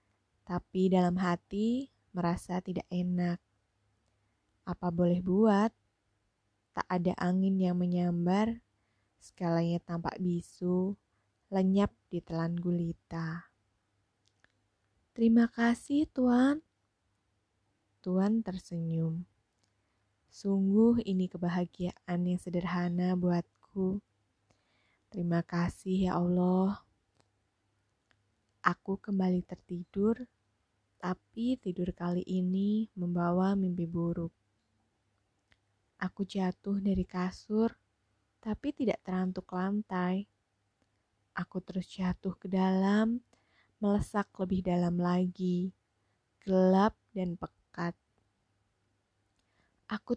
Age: 20-39